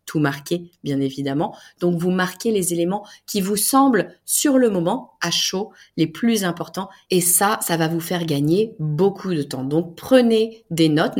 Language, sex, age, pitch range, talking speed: French, female, 30-49, 155-195 Hz, 175 wpm